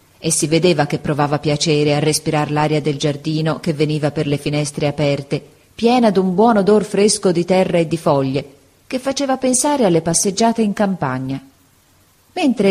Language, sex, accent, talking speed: Italian, female, native, 165 wpm